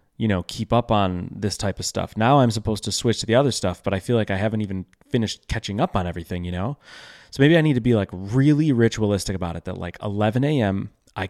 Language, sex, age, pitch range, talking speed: English, male, 20-39, 95-125 Hz, 255 wpm